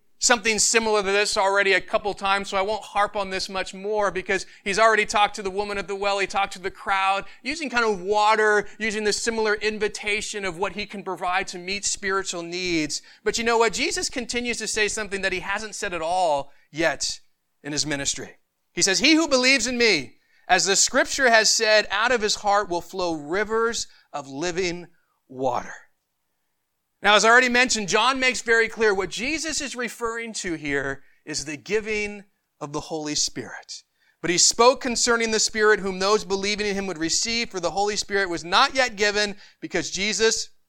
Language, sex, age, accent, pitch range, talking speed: English, male, 40-59, American, 190-230 Hz, 200 wpm